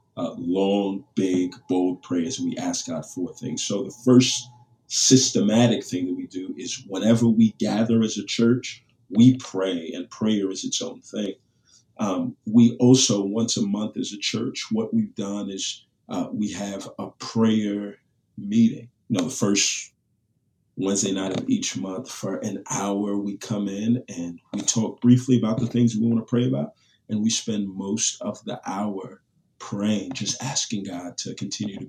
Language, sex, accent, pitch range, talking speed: English, male, American, 100-125 Hz, 175 wpm